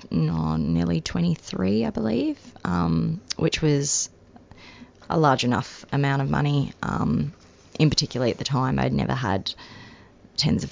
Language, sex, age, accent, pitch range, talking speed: English, female, 20-39, Australian, 115-145 Hz, 140 wpm